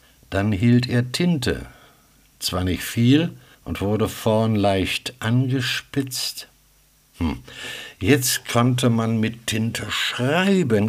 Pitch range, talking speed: 100-140 Hz, 105 wpm